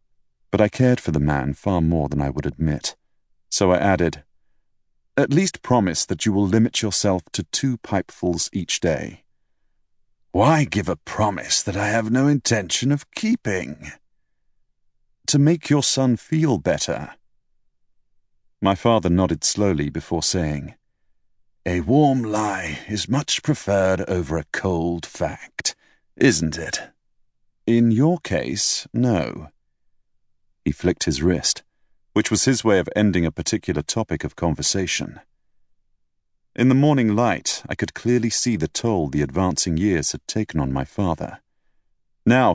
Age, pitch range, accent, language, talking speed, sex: 40-59, 80-120 Hz, British, English, 140 wpm, male